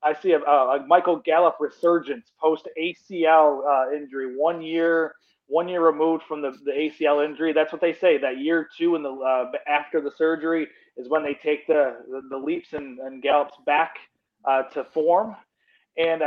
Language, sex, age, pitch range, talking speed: English, male, 30-49, 130-160 Hz, 180 wpm